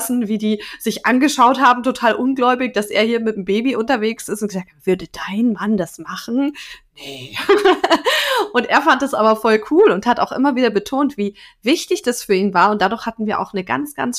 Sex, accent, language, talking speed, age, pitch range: female, German, German, 215 wpm, 20-39, 210-275 Hz